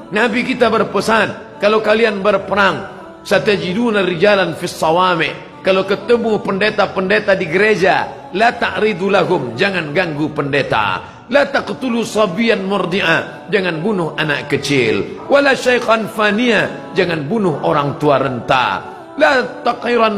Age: 50-69